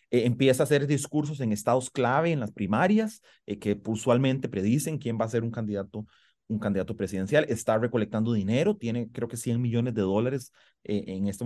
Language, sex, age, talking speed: Spanish, male, 30-49, 195 wpm